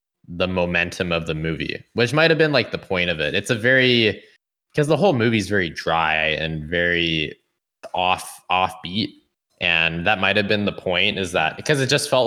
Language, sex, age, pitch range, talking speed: English, male, 20-39, 85-115 Hz, 200 wpm